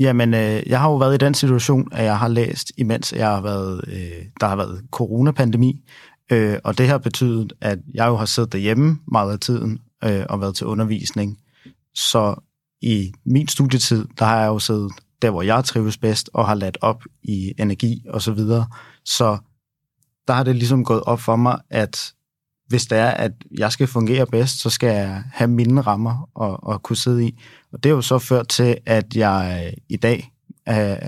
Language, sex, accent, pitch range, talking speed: Danish, male, native, 105-125 Hz, 200 wpm